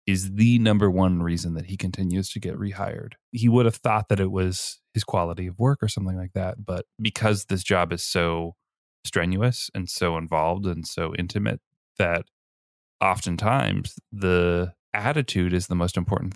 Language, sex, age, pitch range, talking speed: English, male, 20-39, 85-110 Hz, 170 wpm